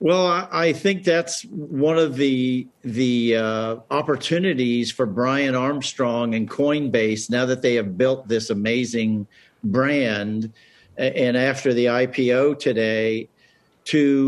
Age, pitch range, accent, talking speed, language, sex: 50-69, 120-140 Hz, American, 120 wpm, English, male